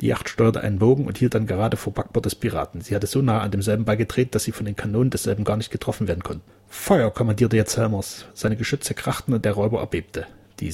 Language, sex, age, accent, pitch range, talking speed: German, male, 30-49, German, 105-125 Hz, 240 wpm